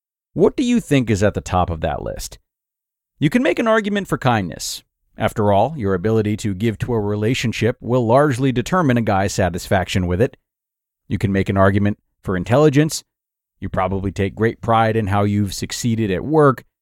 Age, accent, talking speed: 40-59, American, 190 wpm